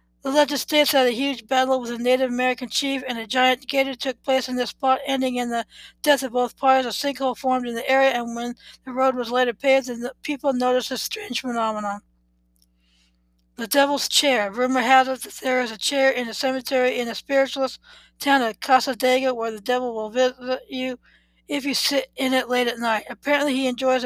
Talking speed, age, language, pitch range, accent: 210 wpm, 60-79, English, 230-265 Hz, American